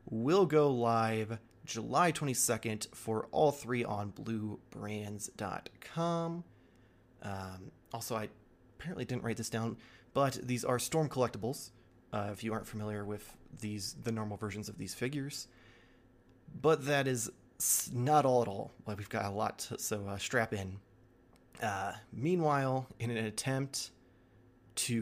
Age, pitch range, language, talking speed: 30-49, 110-130 Hz, English, 140 wpm